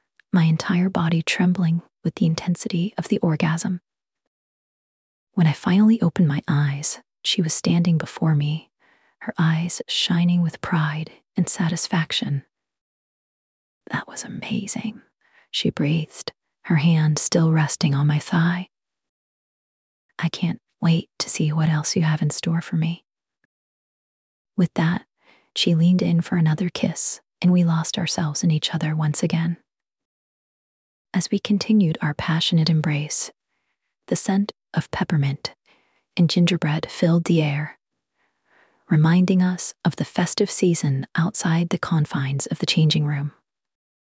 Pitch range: 155-180 Hz